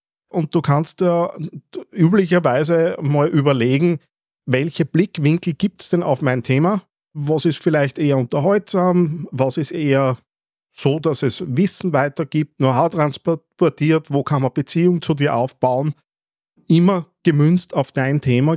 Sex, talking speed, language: male, 135 wpm, German